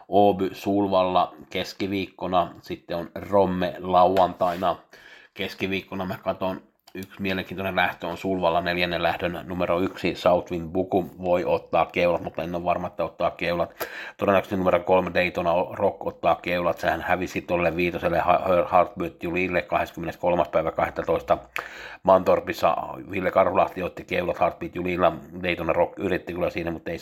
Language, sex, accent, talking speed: Finnish, male, native, 130 wpm